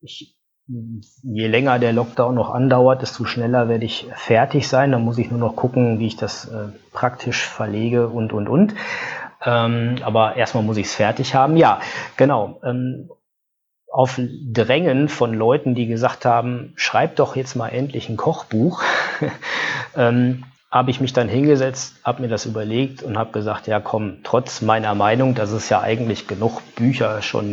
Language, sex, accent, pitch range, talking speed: German, male, German, 110-130 Hz, 170 wpm